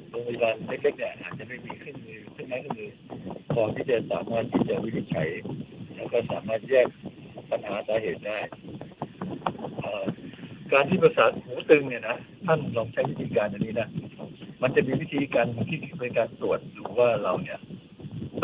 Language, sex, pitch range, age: Thai, male, 125-170 Hz, 60-79